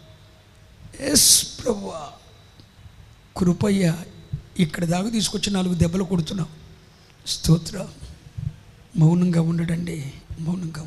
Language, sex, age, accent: Telugu, male, 50-69, native